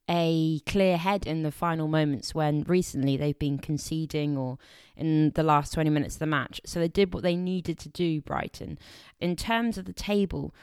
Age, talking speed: 20-39, 200 wpm